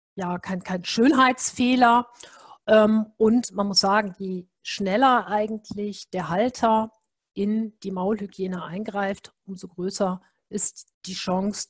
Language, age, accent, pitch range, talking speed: German, 50-69, German, 185-215 Hz, 115 wpm